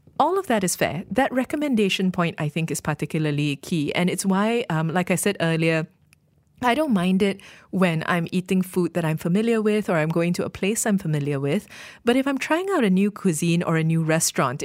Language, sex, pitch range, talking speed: English, female, 160-195 Hz, 220 wpm